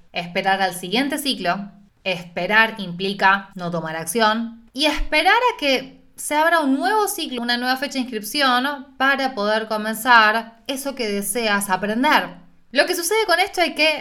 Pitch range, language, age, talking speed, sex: 195-290 Hz, Spanish, 20-39, 160 wpm, female